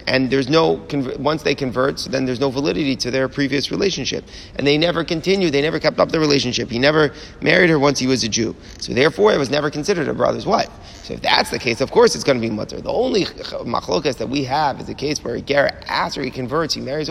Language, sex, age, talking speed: English, male, 30-49, 250 wpm